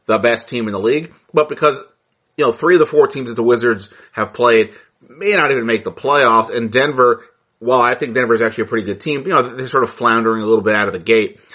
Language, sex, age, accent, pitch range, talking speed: English, male, 30-49, American, 110-130 Hz, 265 wpm